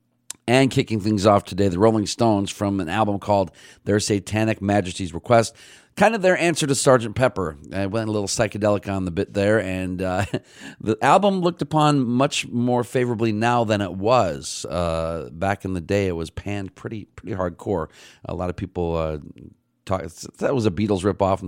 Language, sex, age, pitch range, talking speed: English, male, 40-59, 85-105 Hz, 185 wpm